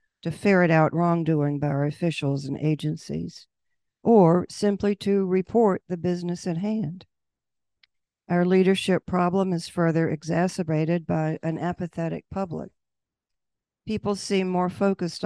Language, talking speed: English, 120 wpm